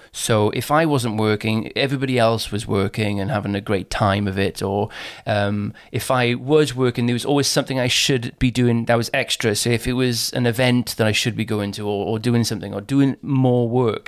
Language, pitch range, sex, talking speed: English, 110-140 Hz, male, 225 wpm